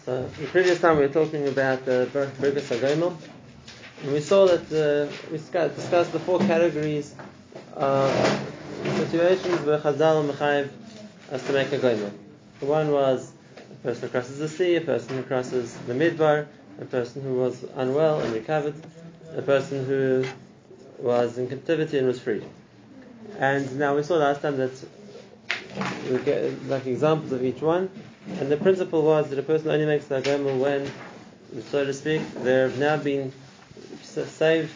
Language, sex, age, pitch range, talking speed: English, male, 20-39, 130-155 Hz, 165 wpm